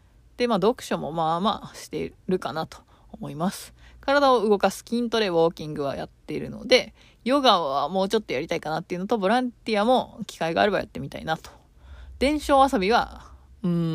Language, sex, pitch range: Japanese, female, 170-235 Hz